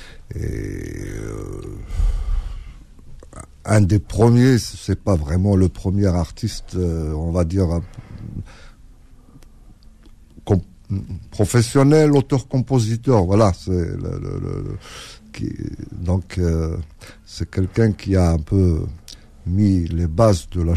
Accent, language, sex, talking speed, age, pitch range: French, French, male, 115 wpm, 60-79, 85-110 Hz